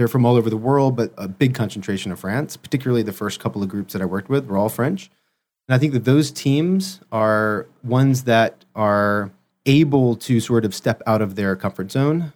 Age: 30-49